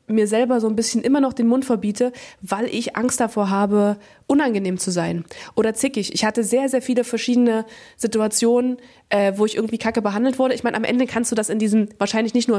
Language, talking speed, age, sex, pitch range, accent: German, 220 wpm, 20-39, female, 205-245 Hz, German